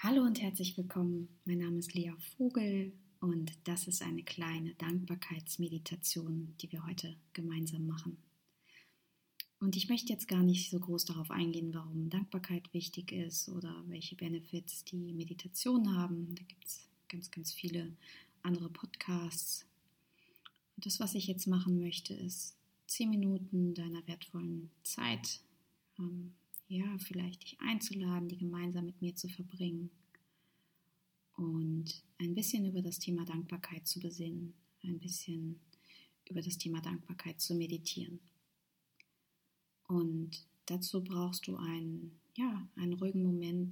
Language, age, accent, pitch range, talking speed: German, 20-39, German, 170-180 Hz, 135 wpm